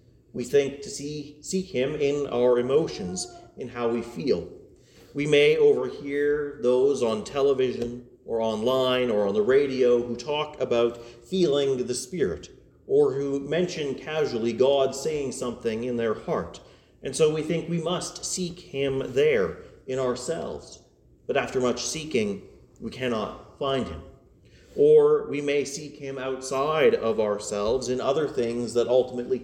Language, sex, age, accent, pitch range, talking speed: English, male, 40-59, American, 120-155 Hz, 145 wpm